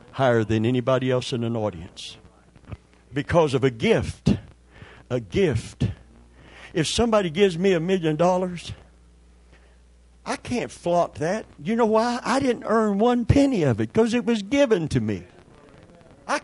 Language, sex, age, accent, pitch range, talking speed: English, male, 60-79, American, 100-155 Hz, 150 wpm